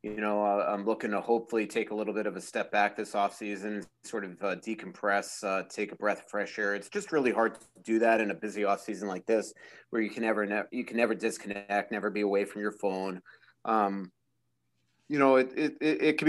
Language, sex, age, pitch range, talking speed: English, male, 30-49, 100-120 Hz, 245 wpm